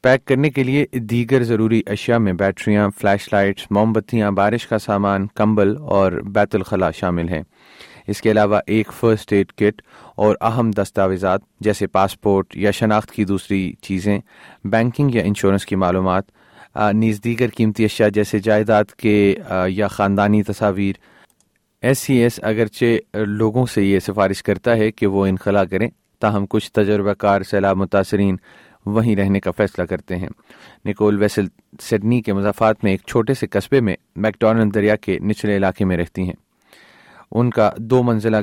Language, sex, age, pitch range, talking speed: Urdu, male, 30-49, 100-110 Hz, 160 wpm